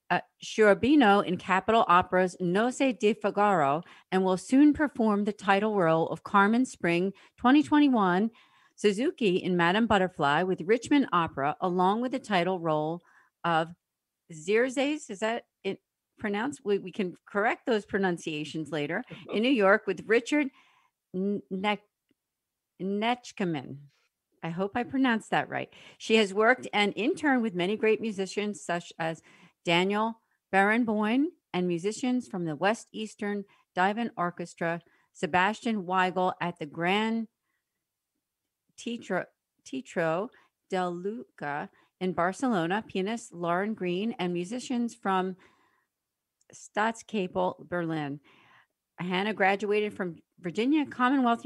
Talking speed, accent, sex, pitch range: 120 wpm, American, female, 175-225 Hz